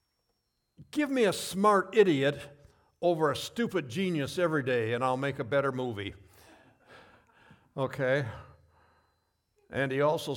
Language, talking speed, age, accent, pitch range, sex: English, 120 wpm, 60-79, American, 115-160 Hz, male